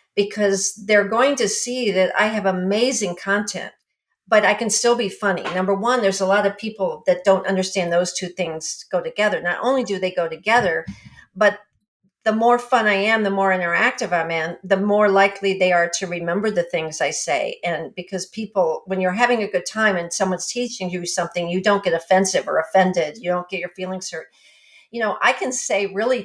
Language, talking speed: English, 210 wpm